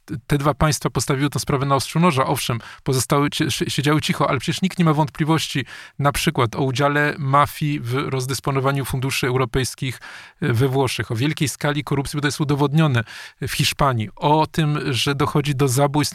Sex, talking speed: male, 170 wpm